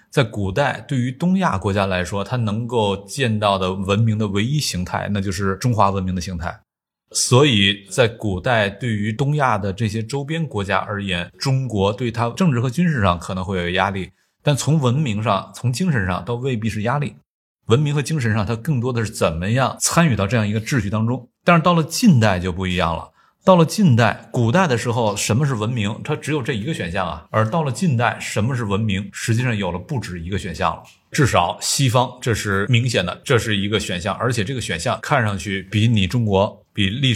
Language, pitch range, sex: Chinese, 100-135 Hz, male